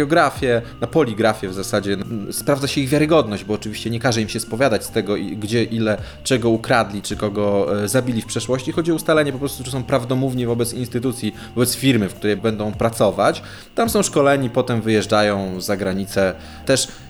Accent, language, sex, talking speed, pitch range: native, Polish, male, 175 wpm, 105-125 Hz